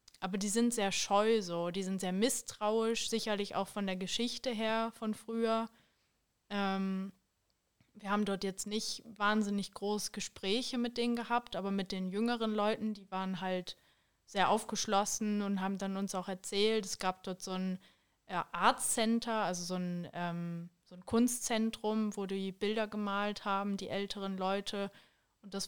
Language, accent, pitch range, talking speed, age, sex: German, German, 195-220 Hz, 165 wpm, 20-39, female